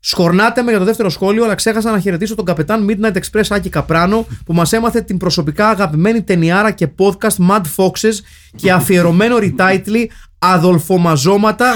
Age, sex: 30-49, male